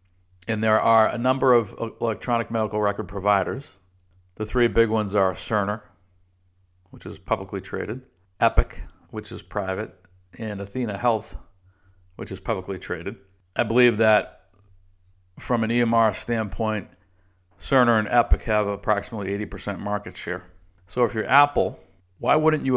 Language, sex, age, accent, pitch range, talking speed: English, male, 60-79, American, 95-115 Hz, 140 wpm